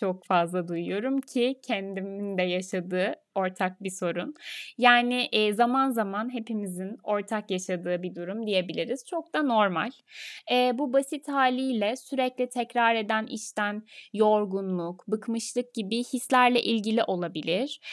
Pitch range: 210-265 Hz